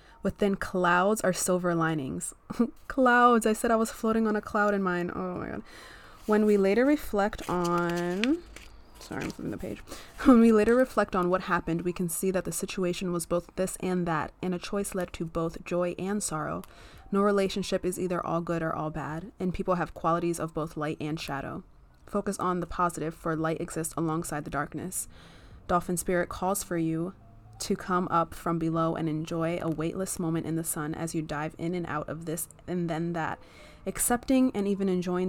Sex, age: female, 20-39